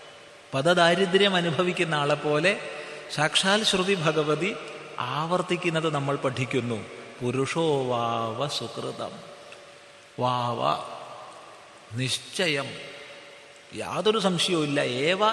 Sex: male